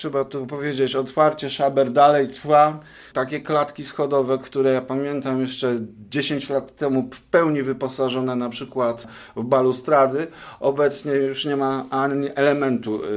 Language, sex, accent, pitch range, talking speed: Polish, male, native, 125-145 Hz, 135 wpm